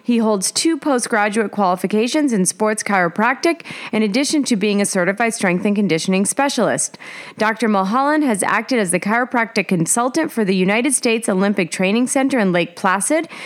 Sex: female